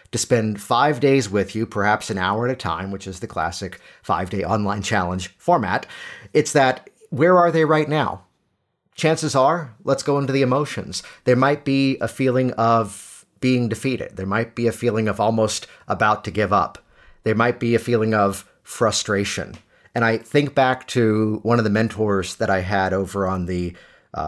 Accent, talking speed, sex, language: American, 190 wpm, male, English